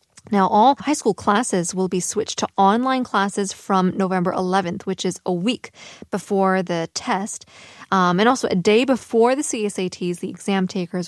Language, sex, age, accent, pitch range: Korean, female, 20-39, American, 185-230 Hz